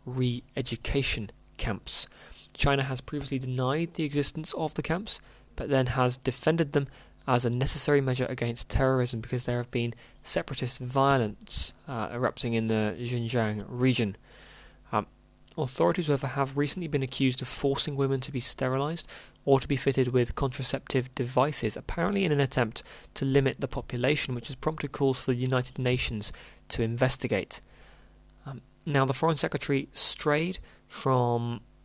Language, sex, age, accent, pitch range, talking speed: English, male, 20-39, British, 120-140 Hz, 145 wpm